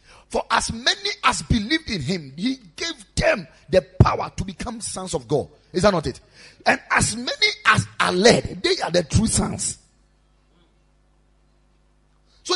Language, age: English, 40-59